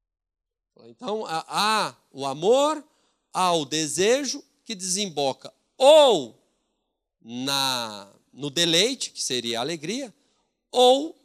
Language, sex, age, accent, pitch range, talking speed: Portuguese, male, 40-59, Brazilian, 165-265 Hz, 95 wpm